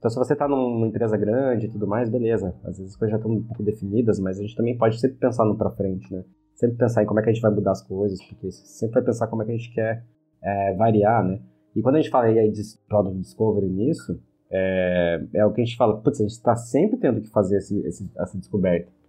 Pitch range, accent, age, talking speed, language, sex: 95-115 Hz, Brazilian, 20-39, 265 wpm, Portuguese, male